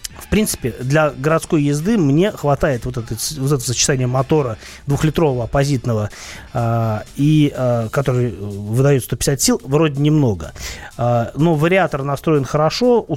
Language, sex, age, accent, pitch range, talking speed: Russian, male, 30-49, native, 125-160 Hz, 130 wpm